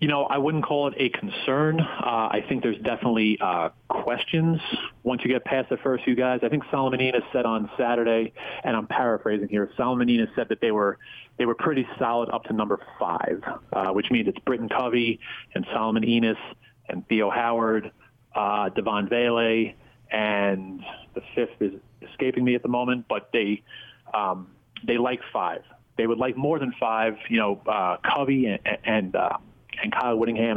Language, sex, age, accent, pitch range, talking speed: English, male, 30-49, American, 110-125 Hz, 185 wpm